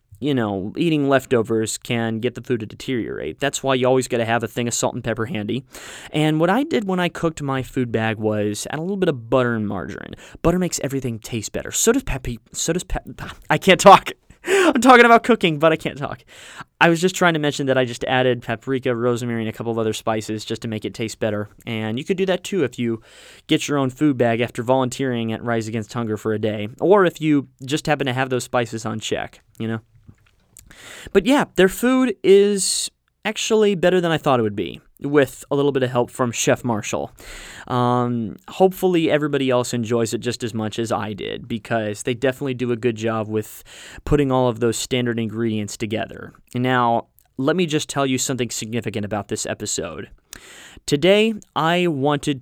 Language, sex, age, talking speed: English, male, 20-39, 215 wpm